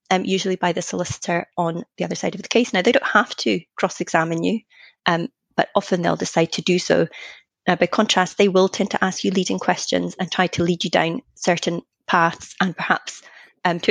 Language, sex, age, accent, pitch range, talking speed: English, female, 30-49, British, 175-210 Hz, 215 wpm